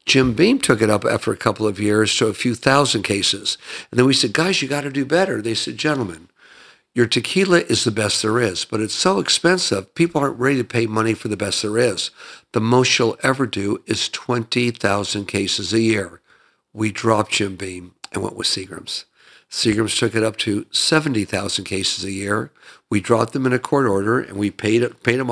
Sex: male